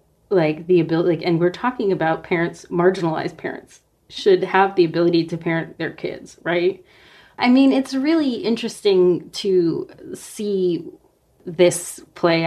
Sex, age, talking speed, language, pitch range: female, 30-49, 135 wpm, English, 165-205 Hz